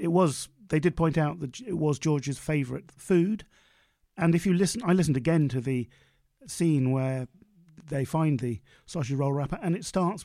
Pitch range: 135-160 Hz